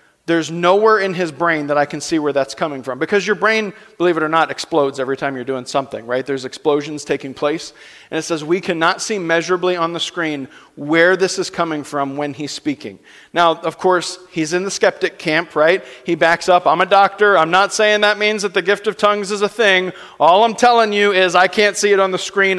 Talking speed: 235 wpm